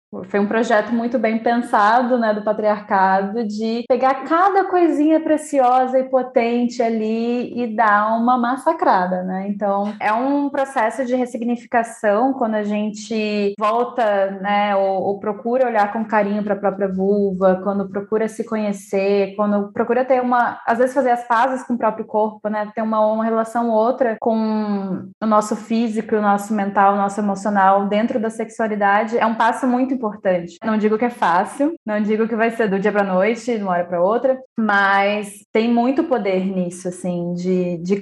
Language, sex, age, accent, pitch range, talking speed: Portuguese, female, 20-39, Brazilian, 205-250 Hz, 175 wpm